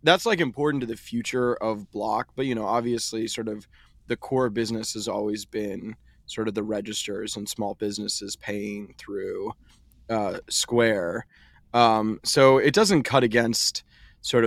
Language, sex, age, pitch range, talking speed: English, male, 20-39, 110-120 Hz, 160 wpm